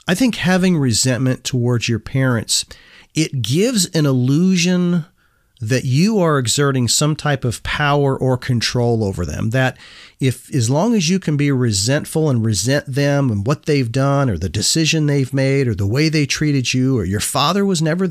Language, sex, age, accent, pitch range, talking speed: English, male, 40-59, American, 120-165 Hz, 180 wpm